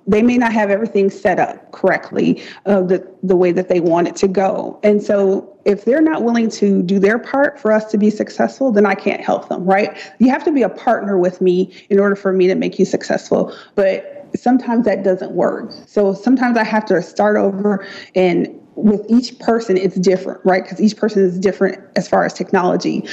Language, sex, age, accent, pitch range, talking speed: English, female, 30-49, American, 190-220 Hz, 215 wpm